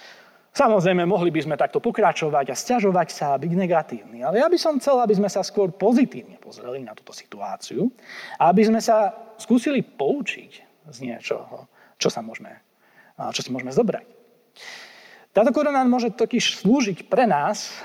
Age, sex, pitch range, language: 30-49, male, 150-220 Hz, Slovak